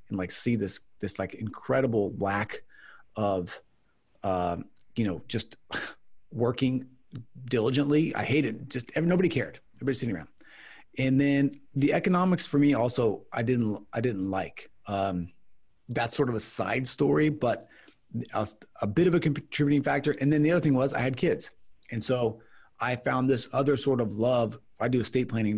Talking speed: 165 wpm